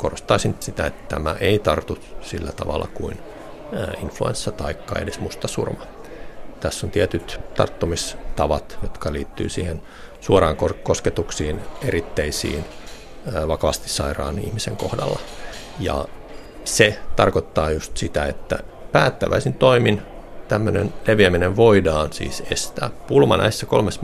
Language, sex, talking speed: Finnish, male, 105 wpm